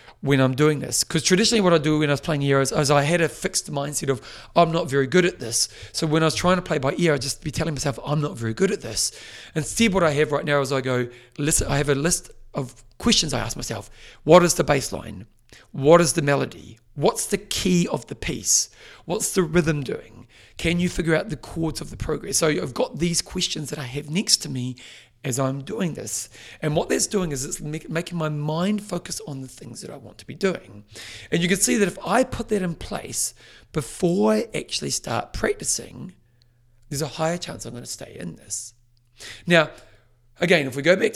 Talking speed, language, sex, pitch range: 235 wpm, English, male, 125-175 Hz